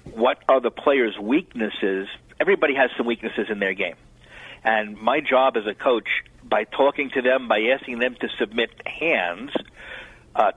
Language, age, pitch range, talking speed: English, 50-69, 110-130 Hz, 165 wpm